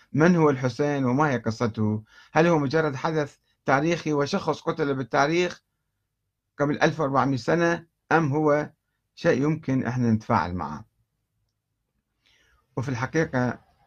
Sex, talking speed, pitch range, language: male, 115 wpm, 110-145 Hz, Arabic